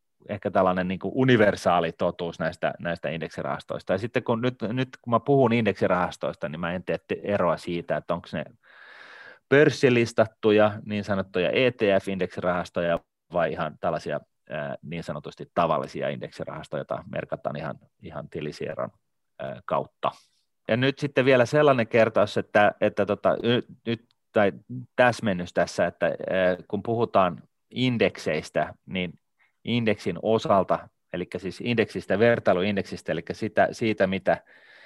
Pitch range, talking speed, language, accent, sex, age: 90-115 Hz, 120 wpm, Finnish, native, male, 30-49